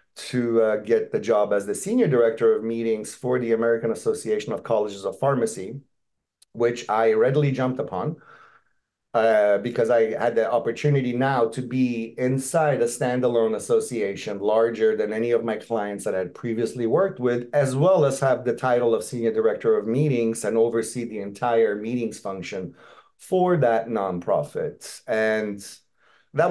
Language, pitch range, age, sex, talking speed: English, 115-150 Hz, 30-49, male, 160 wpm